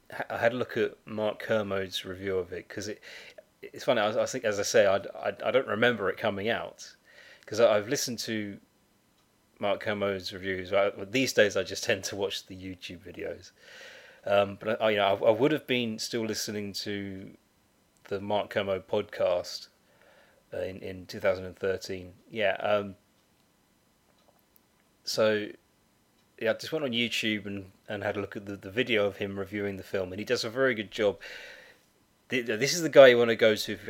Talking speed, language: 200 wpm, English